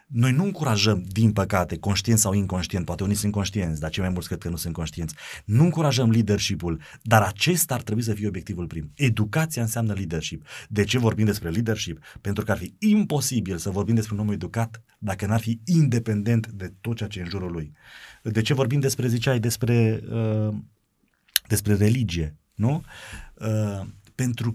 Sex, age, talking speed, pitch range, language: male, 30-49, 175 wpm, 100-120 Hz, Romanian